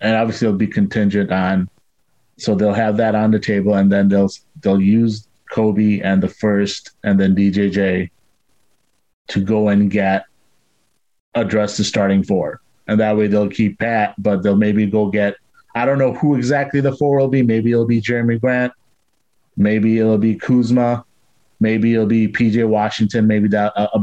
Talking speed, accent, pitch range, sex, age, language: 170 wpm, American, 100-115 Hz, male, 30-49, English